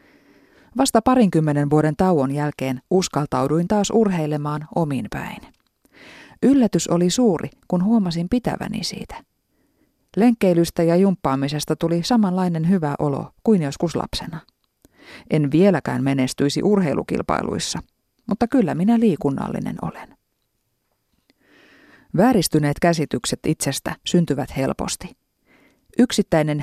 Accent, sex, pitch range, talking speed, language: native, female, 145-195 Hz, 90 wpm, Finnish